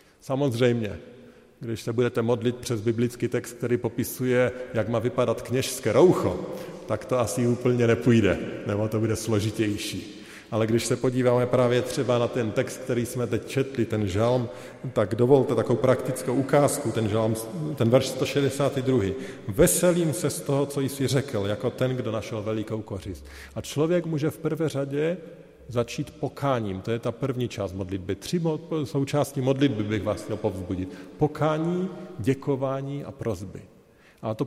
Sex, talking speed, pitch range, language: male, 155 wpm, 110-145 Hz, Slovak